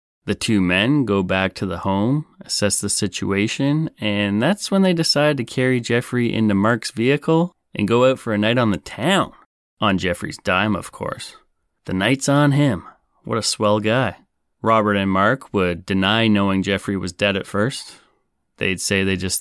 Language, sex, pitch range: English, male, 95-120 Hz